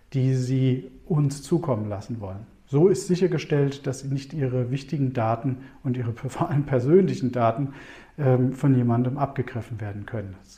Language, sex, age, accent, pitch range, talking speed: German, male, 50-69, German, 125-150 Hz, 145 wpm